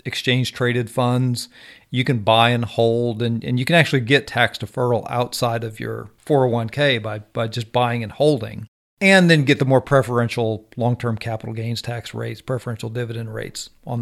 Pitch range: 115-140 Hz